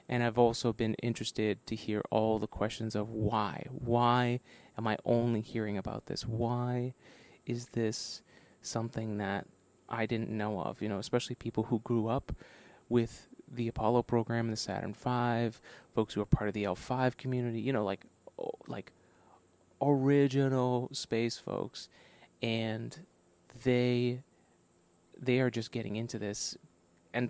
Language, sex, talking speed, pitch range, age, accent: English, male, 150 wpm, 110-125 Hz, 30-49, American